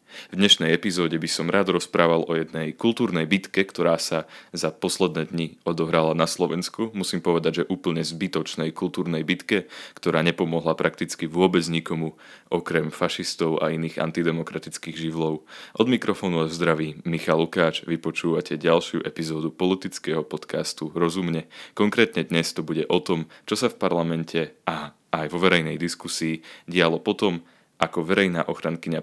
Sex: male